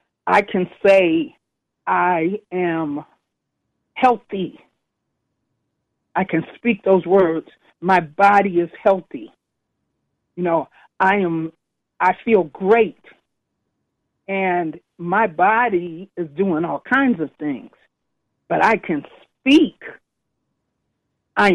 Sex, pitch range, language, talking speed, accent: female, 170-210 Hz, English, 100 wpm, American